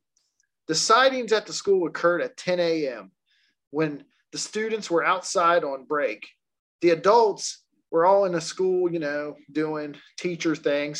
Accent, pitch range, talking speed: American, 150-215 Hz, 155 wpm